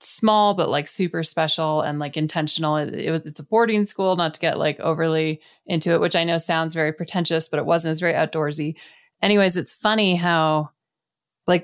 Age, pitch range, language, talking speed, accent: 30-49, 160-185 Hz, English, 205 wpm, American